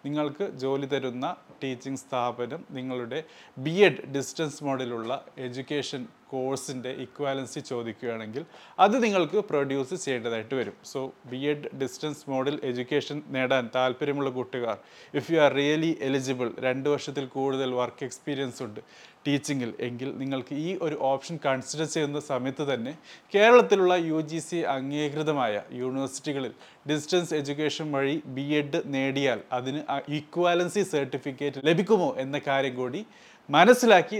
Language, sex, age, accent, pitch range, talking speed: Malayalam, male, 30-49, native, 130-155 Hz, 115 wpm